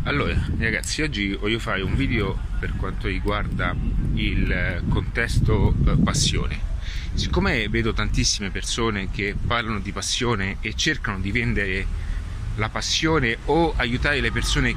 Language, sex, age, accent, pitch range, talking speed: Italian, male, 30-49, native, 95-120 Hz, 125 wpm